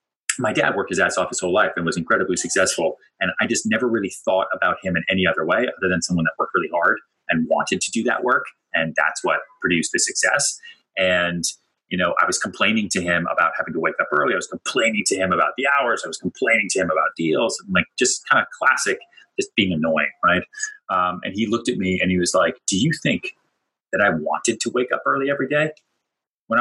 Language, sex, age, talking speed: English, male, 30-49, 235 wpm